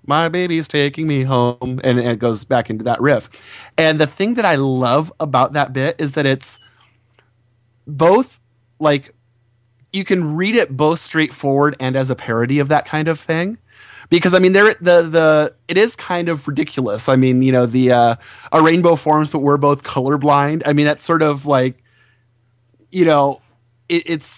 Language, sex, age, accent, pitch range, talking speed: English, male, 30-49, American, 125-160 Hz, 185 wpm